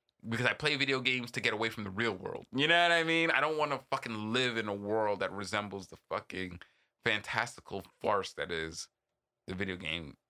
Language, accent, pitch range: English, American, 95-130 Hz